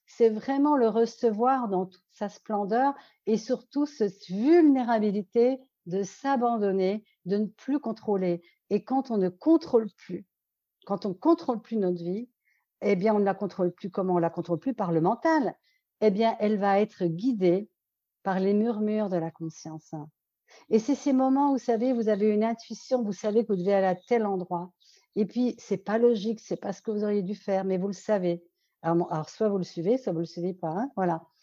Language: French